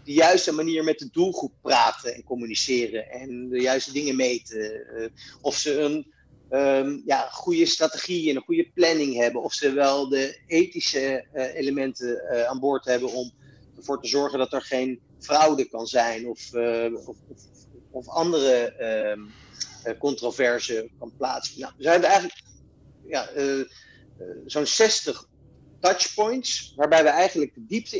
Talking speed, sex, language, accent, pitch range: 150 wpm, male, Dutch, Dutch, 125-165 Hz